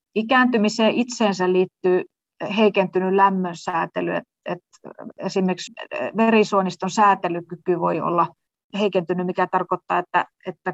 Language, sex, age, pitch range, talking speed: Finnish, female, 30-49, 180-195 Hz, 85 wpm